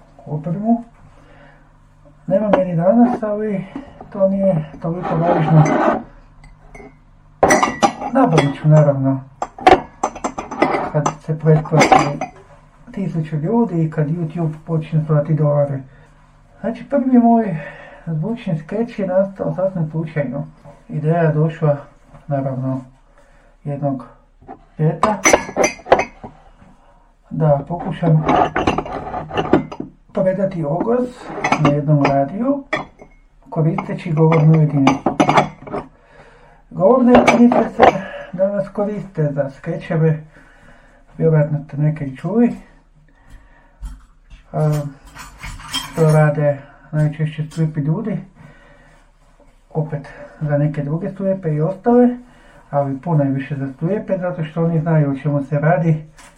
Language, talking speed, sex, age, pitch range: Croatian, 90 wpm, male, 50-69, 145-190 Hz